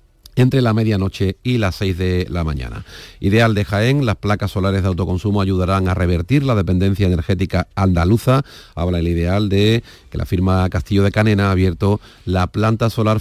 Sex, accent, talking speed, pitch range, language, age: male, Spanish, 175 wpm, 95-110 Hz, Spanish, 40-59